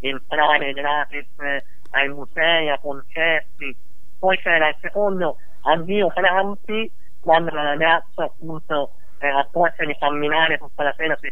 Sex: male